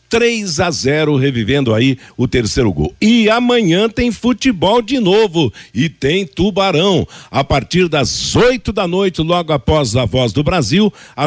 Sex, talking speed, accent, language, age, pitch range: male, 160 wpm, Brazilian, Portuguese, 60-79, 130-175 Hz